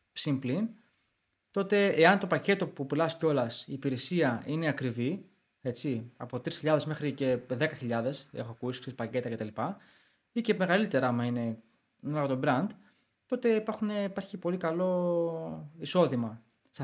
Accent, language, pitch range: native, Greek, 135-190 Hz